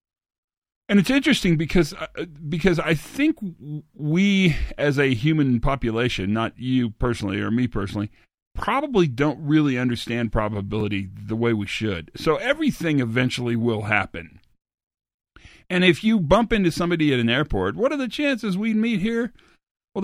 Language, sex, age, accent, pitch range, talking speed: English, male, 40-59, American, 120-180 Hz, 155 wpm